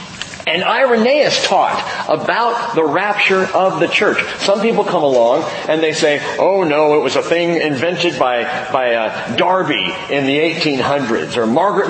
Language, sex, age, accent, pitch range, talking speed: English, male, 40-59, American, 150-205 Hz, 160 wpm